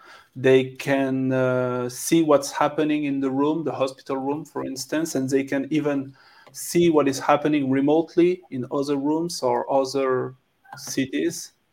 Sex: male